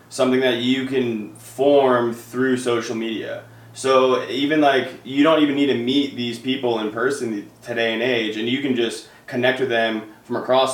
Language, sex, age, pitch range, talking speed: English, male, 20-39, 120-140 Hz, 185 wpm